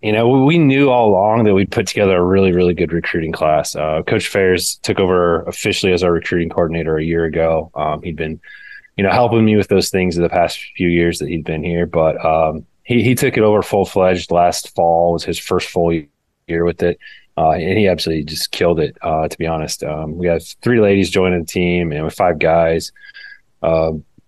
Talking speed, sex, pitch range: 225 wpm, male, 85-110 Hz